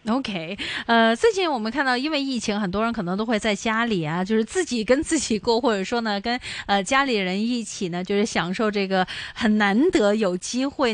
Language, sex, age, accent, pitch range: Chinese, female, 20-39, native, 205-290 Hz